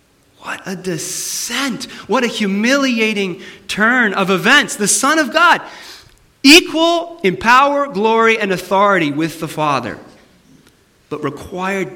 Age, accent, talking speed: 40-59, American, 120 wpm